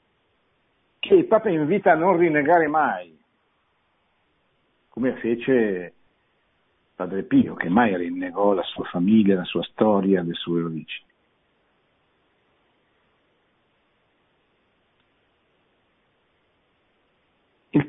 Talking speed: 85 wpm